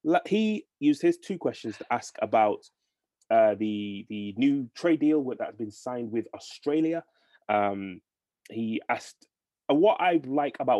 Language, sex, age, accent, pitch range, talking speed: English, male, 20-39, British, 105-150 Hz, 145 wpm